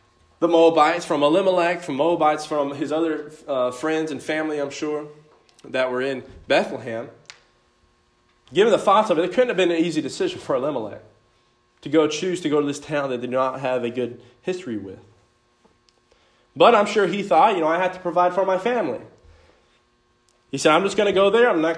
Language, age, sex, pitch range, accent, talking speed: English, 20-39, male, 120-180 Hz, American, 205 wpm